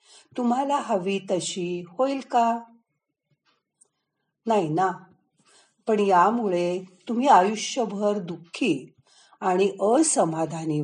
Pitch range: 160-235 Hz